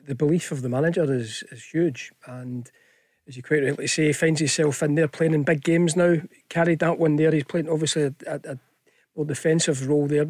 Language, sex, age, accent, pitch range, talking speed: English, male, 40-59, British, 145-170 Hz, 220 wpm